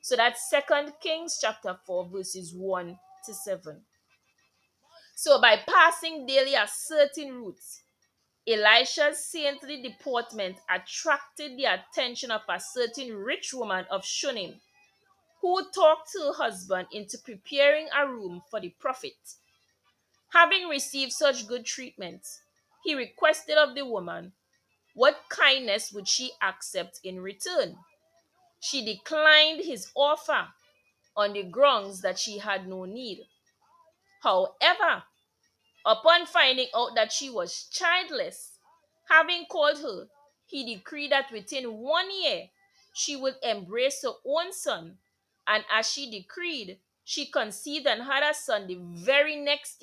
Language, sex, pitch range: English, female, 220-320 Hz